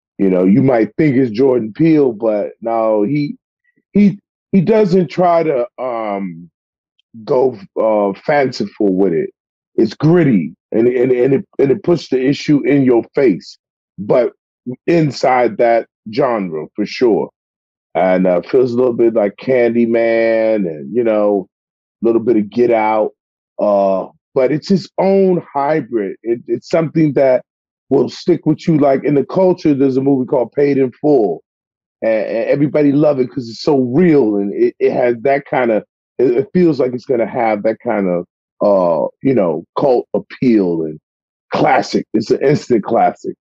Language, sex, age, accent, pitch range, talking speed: English, male, 30-49, American, 115-170 Hz, 165 wpm